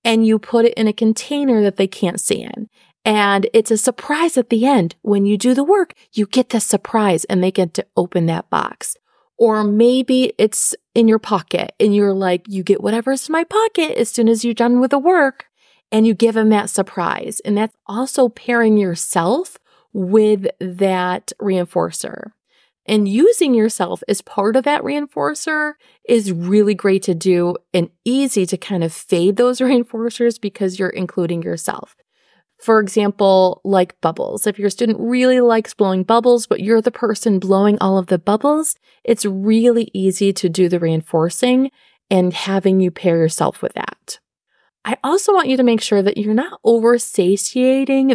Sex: female